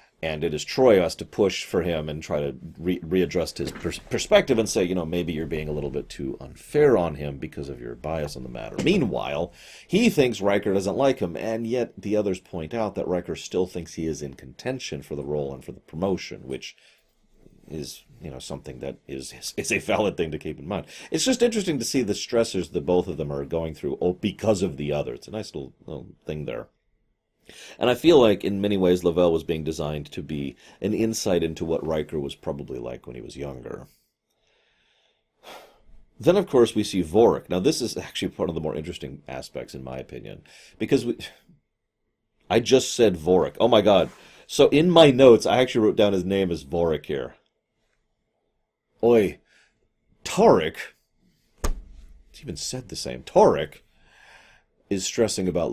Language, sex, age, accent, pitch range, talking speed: English, male, 40-59, American, 75-105 Hz, 200 wpm